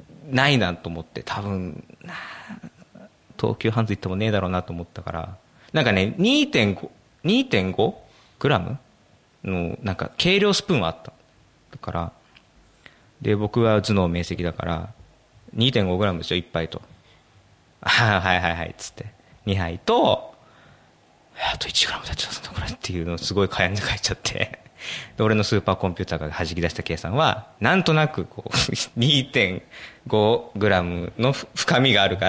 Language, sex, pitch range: Japanese, male, 85-115 Hz